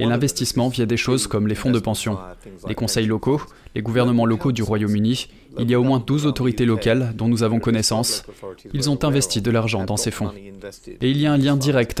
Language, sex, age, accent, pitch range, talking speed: French, male, 20-39, French, 110-125 Hz, 225 wpm